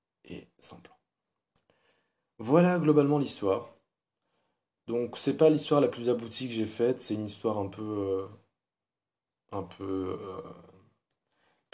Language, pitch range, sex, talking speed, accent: English, 100-125 Hz, male, 125 wpm, French